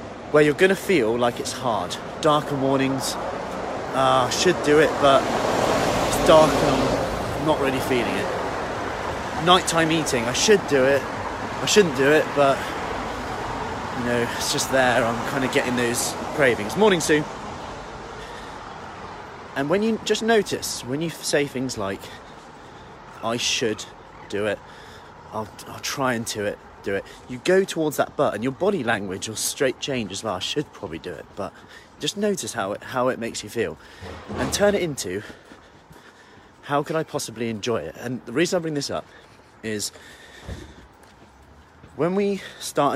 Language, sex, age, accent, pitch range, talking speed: English, male, 30-49, British, 115-160 Hz, 165 wpm